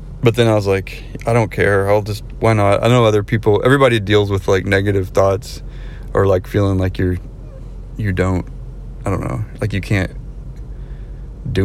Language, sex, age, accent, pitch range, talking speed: English, male, 30-49, American, 95-120 Hz, 185 wpm